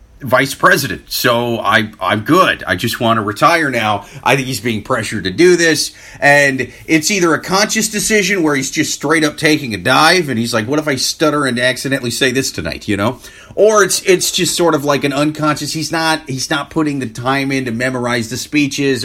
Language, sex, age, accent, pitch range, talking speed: English, male, 30-49, American, 130-160 Hz, 215 wpm